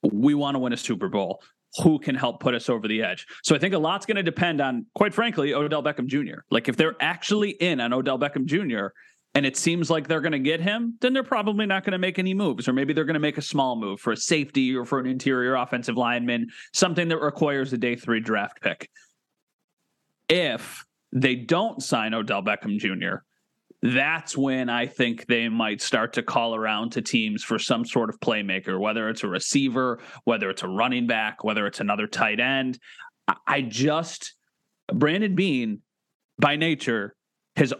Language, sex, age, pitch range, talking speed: English, male, 30-49, 125-170 Hz, 200 wpm